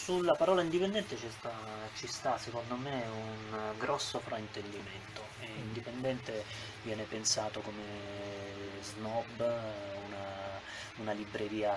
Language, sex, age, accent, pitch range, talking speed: Italian, male, 20-39, native, 105-120 Hz, 95 wpm